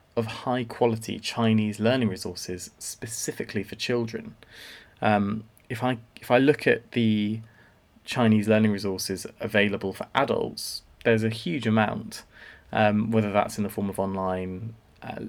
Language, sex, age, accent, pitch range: Chinese, male, 20-39, British, 100-115 Hz